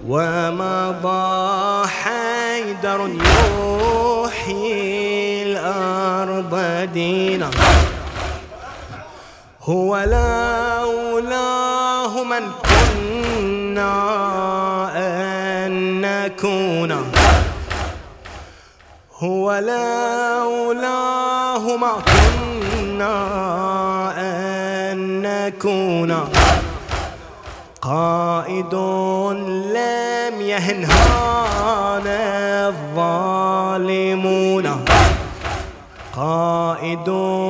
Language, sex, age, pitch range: English, male, 20-39, 185-235 Hz